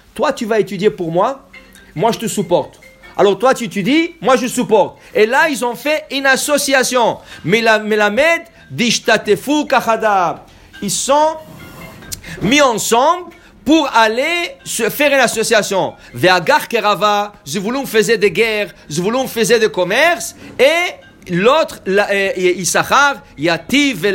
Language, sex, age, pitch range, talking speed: English, male, 50-69, 200-275 Hz, 130 wpm